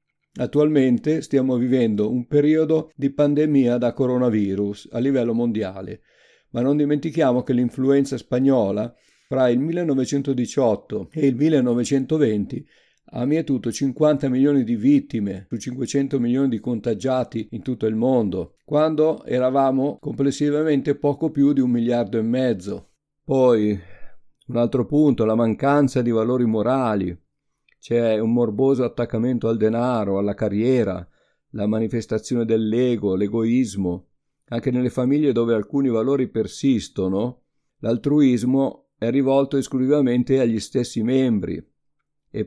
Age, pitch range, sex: 50-69, 115-140 Hz, male